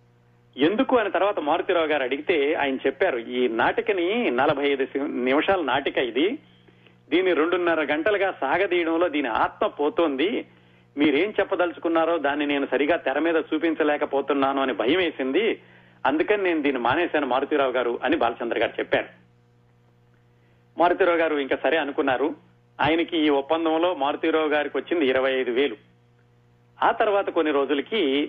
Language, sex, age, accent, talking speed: Telugu, male, 40-59, native, 125 wpm